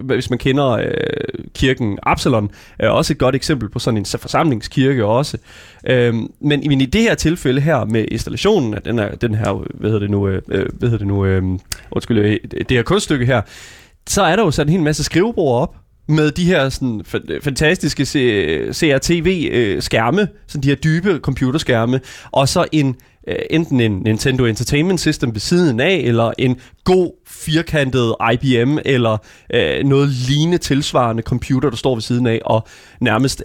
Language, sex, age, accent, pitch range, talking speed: Danish, male, 20-39, native, 120-165 Hz, 145 wpm